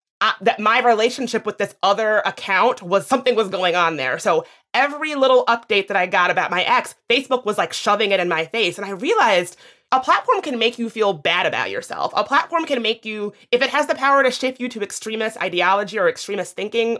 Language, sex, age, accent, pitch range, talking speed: English, female, 30-49, American, 190-255 Hz, 220 wpm